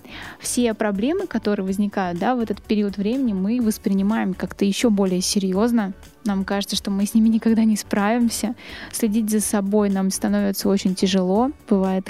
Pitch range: 200-235 Hz